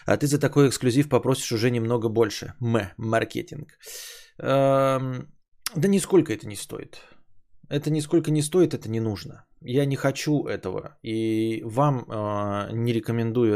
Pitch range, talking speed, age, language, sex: 110-150 Hz, 145 wpm, 20-39, Bulgarian, male